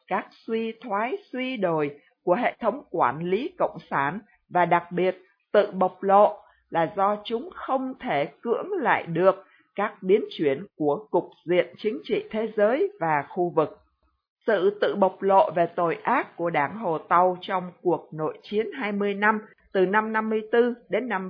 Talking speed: 170 wpm